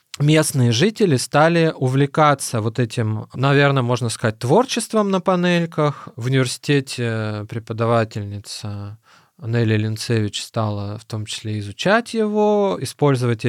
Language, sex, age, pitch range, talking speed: Russian, male, 20-39, 120-165 Hz, 105 wpm